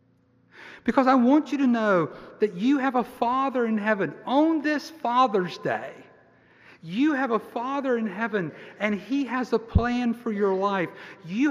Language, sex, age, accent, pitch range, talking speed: English, male, 50-69, American, 170-240 Hz, 165 wpm